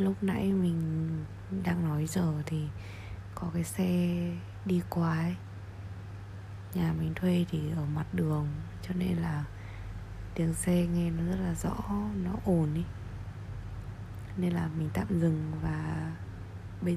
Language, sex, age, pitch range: Vietnamese, female, 20-39, 95-100 Hz